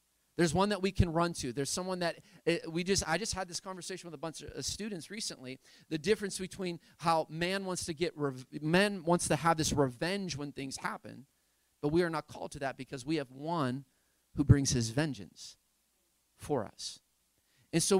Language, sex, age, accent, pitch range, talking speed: English, male, 30-49, American, 135-185 Hz, 195 wpm